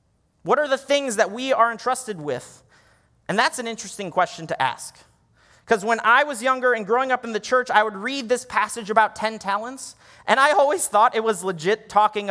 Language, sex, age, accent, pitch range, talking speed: English, male, 30-49, American, 185-245 Hz, 210 wpm